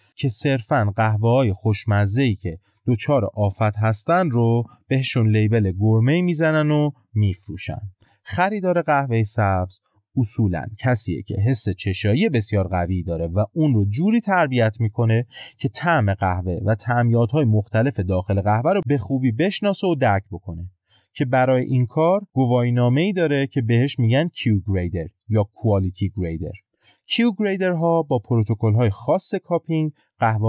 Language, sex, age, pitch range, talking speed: Persian, male, 30-49, 105-145 Hz, 145 wpm